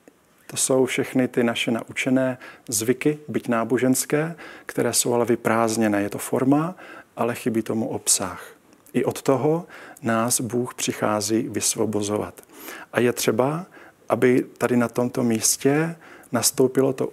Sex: male